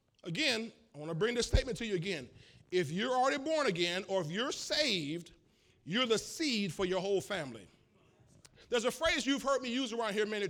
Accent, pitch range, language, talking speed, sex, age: American, 185-250 Hz, English, 205 wpm, male, 40-59